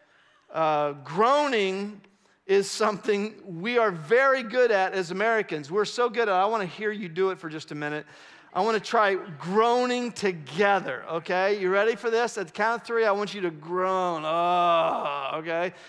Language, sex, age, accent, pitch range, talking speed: English, male, 40-59, American, 180-245 Hz, 190 wpm